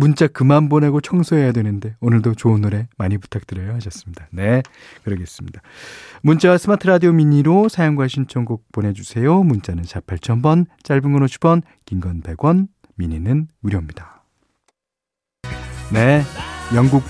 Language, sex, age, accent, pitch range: Korean, male, 40-59, native, 100-170 Hz